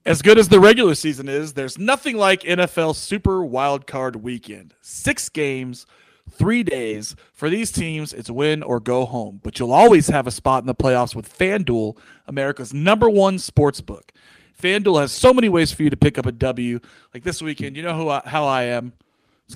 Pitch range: 125-170 Hz